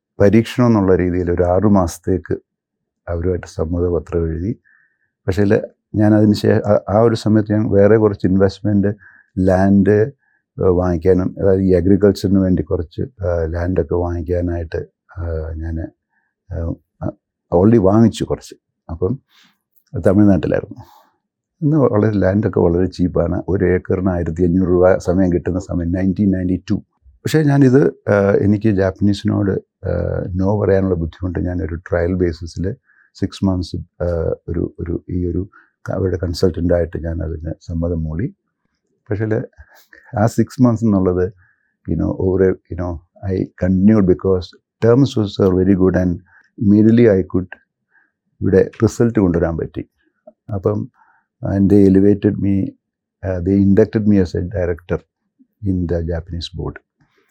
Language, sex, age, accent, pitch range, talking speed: Malayalam, male, 60-79, native, 90-105 Hz, 115 wpm